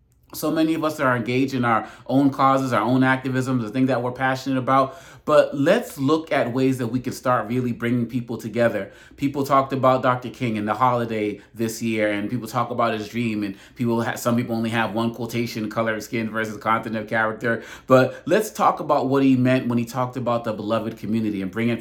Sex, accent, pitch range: male, American, 115-140 Hz